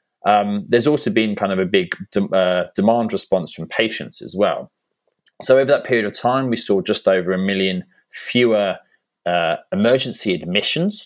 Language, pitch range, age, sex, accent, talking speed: English, 90-130 Hz, 20-39, male, British, 175 wpm